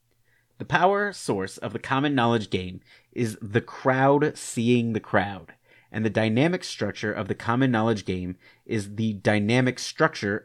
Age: 30-49